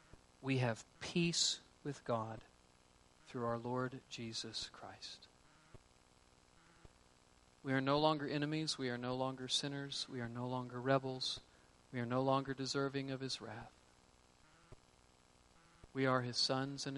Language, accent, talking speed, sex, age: English, American, 135 wpm, male, 40-59